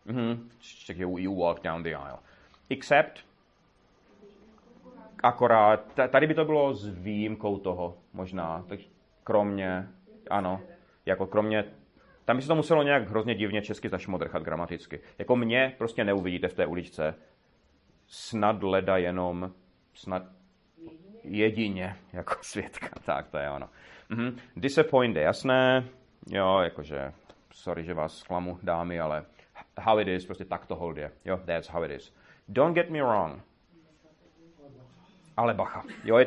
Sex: male